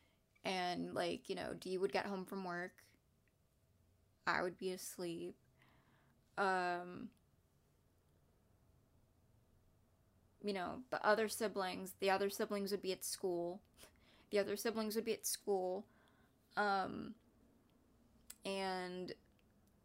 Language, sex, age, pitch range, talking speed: English, female, 20-39, 175-210 Hz, 110 wpm